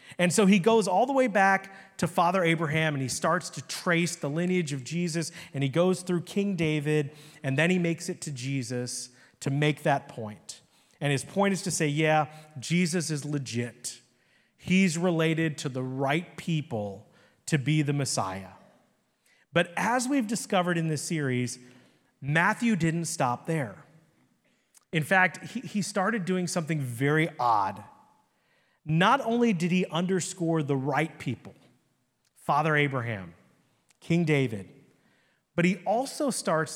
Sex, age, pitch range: male, 30-49, 140-190 Hz